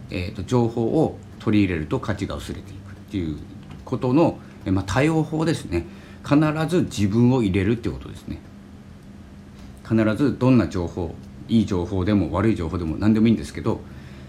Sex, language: male, Japanese